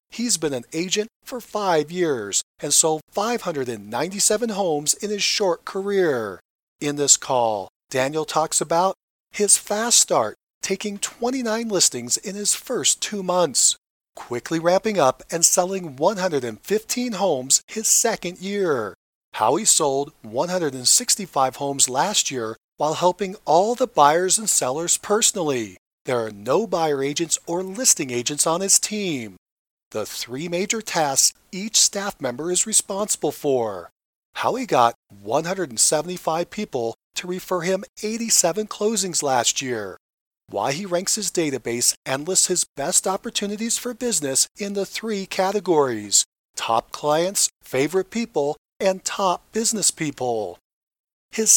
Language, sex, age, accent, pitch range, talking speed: English, male, 40-59, American, 145-205 Hz, 135 wpm